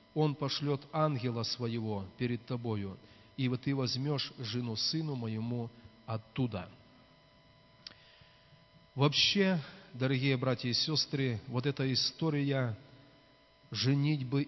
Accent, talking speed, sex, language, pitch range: native, 95 wpm, male, Russian, 115-140 Hz